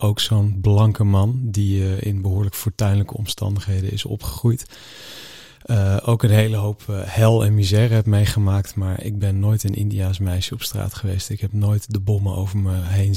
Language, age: Dutch, 40-59